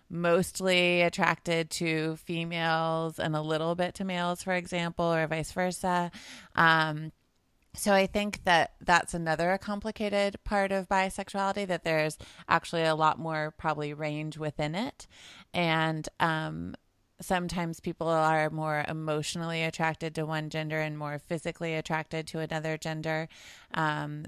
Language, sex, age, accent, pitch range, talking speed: English, female, 30-49, American, 150-170 Hz, 135 wpm